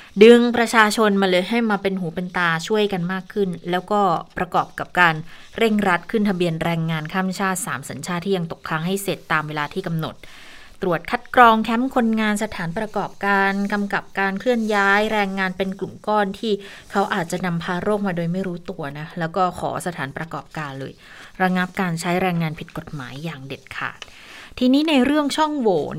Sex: female